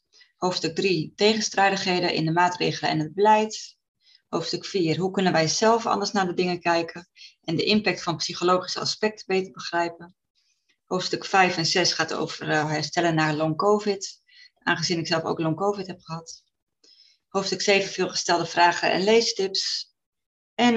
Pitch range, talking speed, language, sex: 165-200 Hz, 145 wpm, Dutch, female